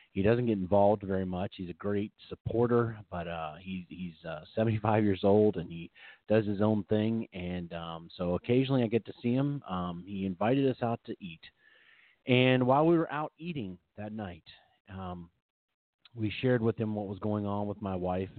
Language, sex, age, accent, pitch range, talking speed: English, male, 40-59, American, 95-115 Hz, 195 wpm